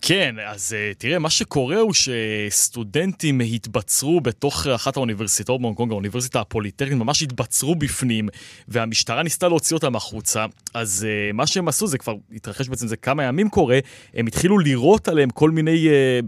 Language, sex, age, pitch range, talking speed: Hebrew, male, 20-39, 115-145 Hz, 160 wpm